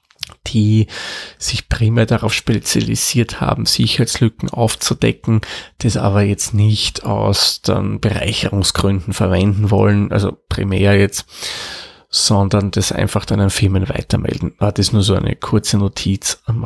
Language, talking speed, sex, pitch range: German, 135 wpm, male, 100-115 Hz